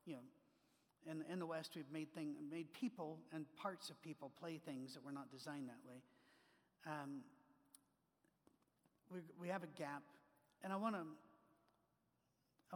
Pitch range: 150-190 Hz